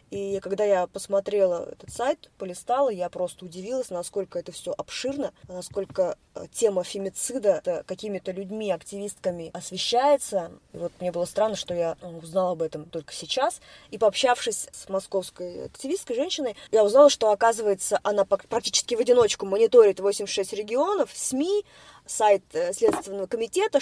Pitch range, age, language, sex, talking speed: 190-255 Hz, 20-39, Russian, female, 135 wpm